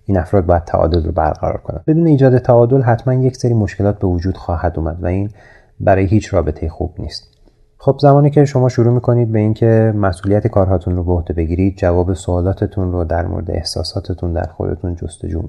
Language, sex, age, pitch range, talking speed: Persian, male, 30-49, 85-105 Hz, 185 wpm